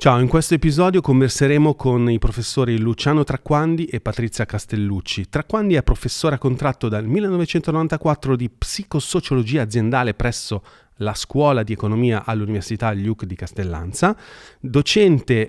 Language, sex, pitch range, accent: Italian, male, 110-155 Hz, native